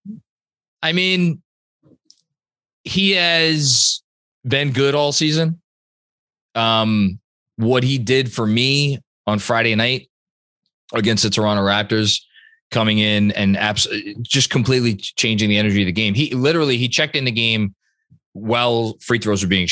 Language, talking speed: English, 135 wpm